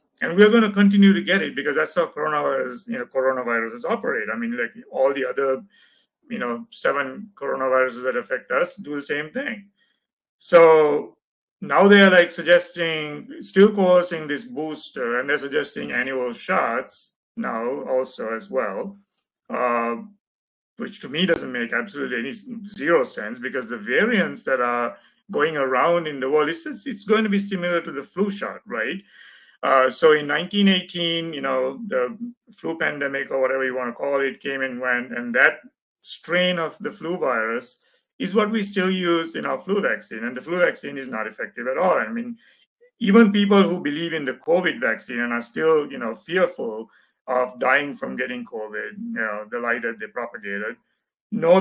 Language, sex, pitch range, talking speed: English, male, 130-205 Hz, 185 wpm